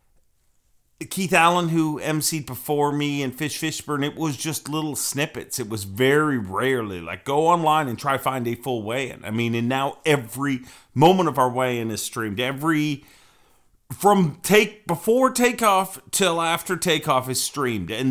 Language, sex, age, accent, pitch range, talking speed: English, male, 40-59, American, 120-150 Hz, 160 wpm